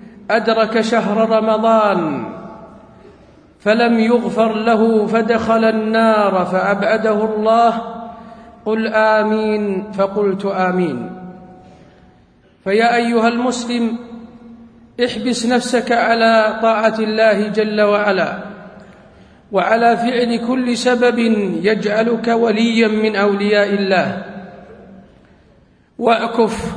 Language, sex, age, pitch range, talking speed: Arabic, male, 50-69, 200-225 Hz, 75 wpm